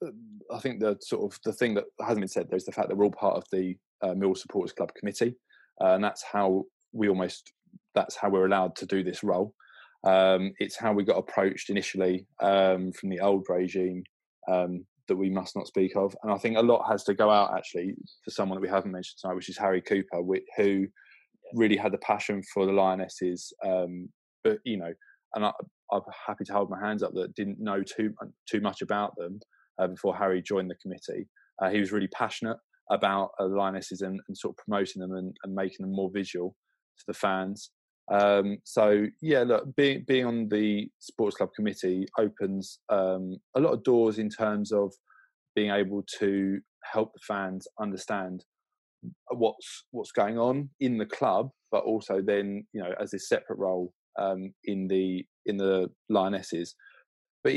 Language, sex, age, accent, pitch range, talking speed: English, male, 20-39, British, 95-105 Hz, 195 wpm